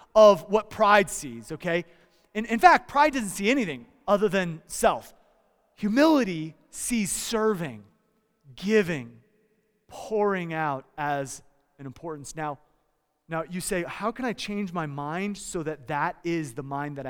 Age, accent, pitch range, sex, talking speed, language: 30-49, American, 170-260 Hz, male, 145 wpm, English